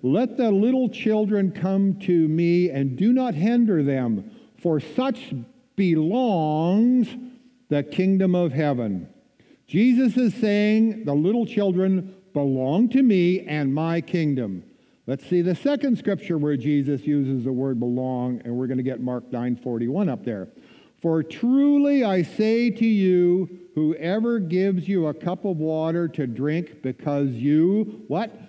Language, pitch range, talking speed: English, 145-210 Hz, 145 wpm